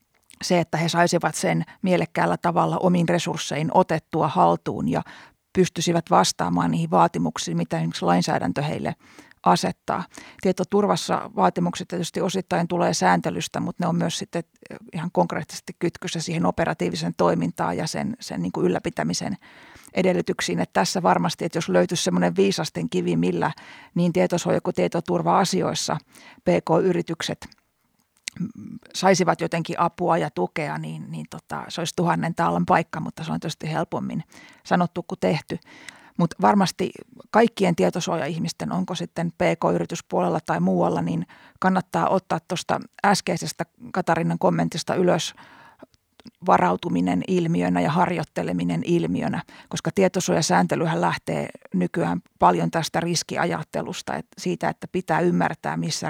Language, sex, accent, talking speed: Finnish, female, native, 125 wpm